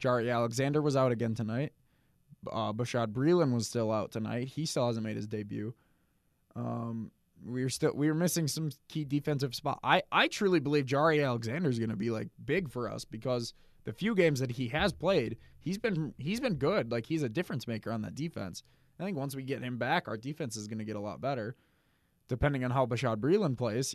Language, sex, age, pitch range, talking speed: English, male, 20-39, 115-150 Hz, 215 wpm